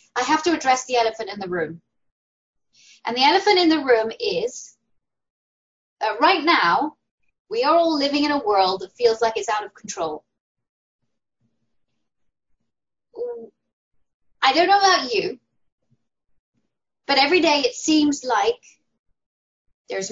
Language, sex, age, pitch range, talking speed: English, female, 10-29, 215-315 Hz, 135 wpm